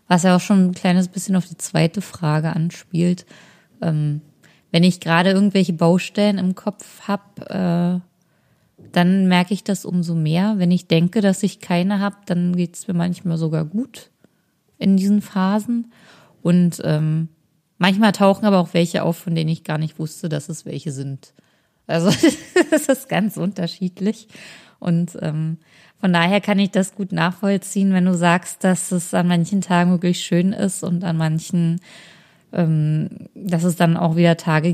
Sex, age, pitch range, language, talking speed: female, 20-39, 165-195 Hz, German, 170 wpm